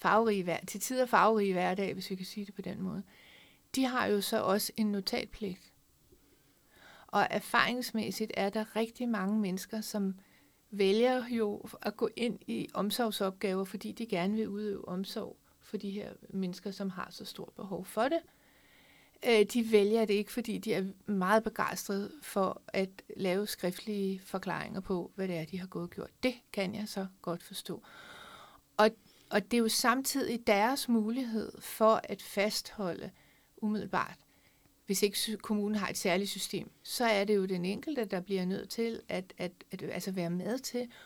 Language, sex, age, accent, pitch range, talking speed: Danish, female, 60-79, native, 190-220 Hz, 170 wpm